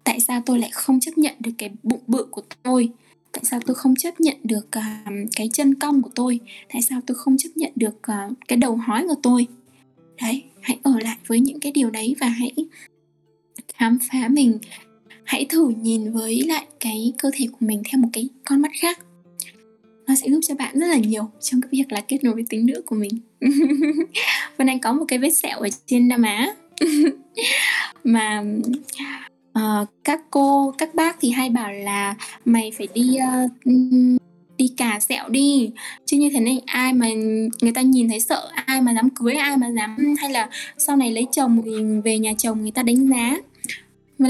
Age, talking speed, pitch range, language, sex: 10-29, 205 wpm, 225-280 Hz, Vietnamese, female